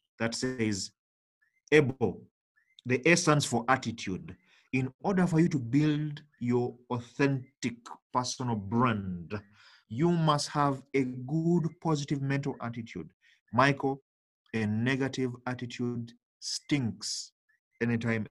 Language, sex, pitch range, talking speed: English, male, 115-145 Hz, 100 wpm